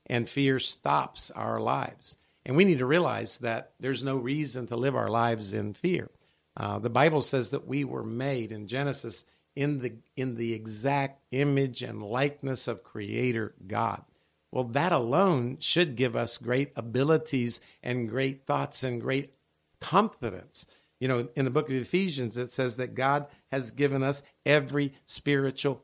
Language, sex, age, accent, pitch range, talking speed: English, male, 50-69, American, 120-145 Hz, 165 wpm